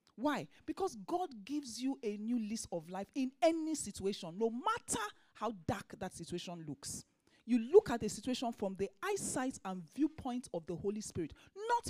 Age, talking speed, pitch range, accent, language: 40-59, 175 wpm, 195-295 Hz, Nigerian, English